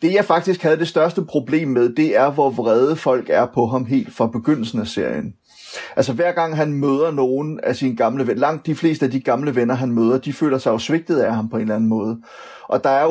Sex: male